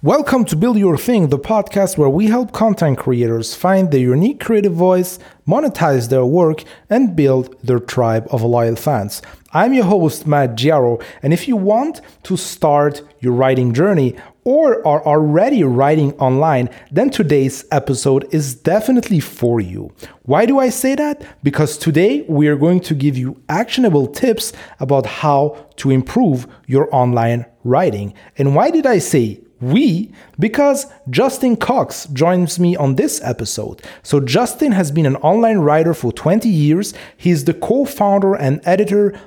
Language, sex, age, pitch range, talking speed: English, male, 30-49, 135-205 Hz, 160 wpm